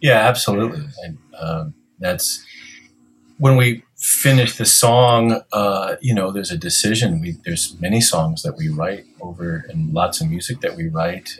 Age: 40-59